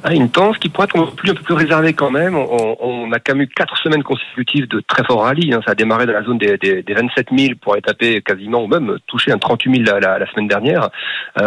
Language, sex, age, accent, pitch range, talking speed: French, male, 40-59, French, 105-130 Hz, 300 wpm